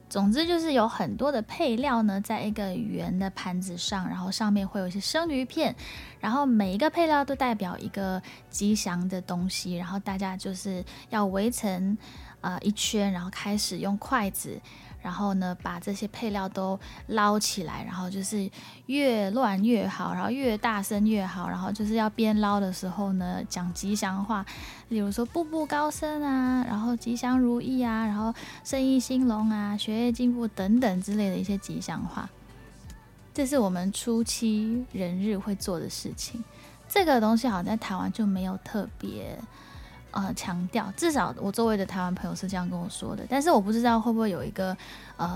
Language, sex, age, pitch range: Chinese, female, 10-29, 190-230 Hz